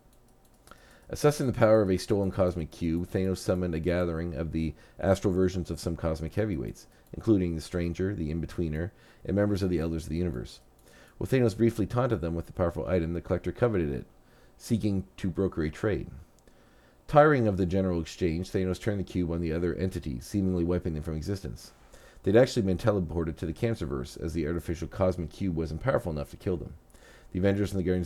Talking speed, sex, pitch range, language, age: 195 wpm, male, 80-95 Hz, English, 40-59